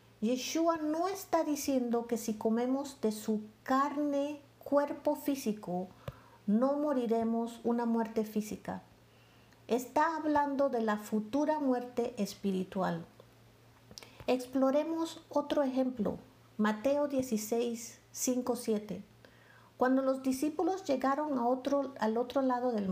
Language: English